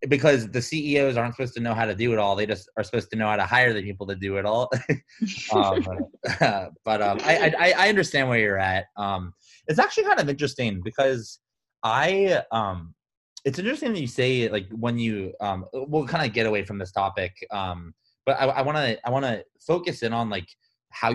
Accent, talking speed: American, 215 wpm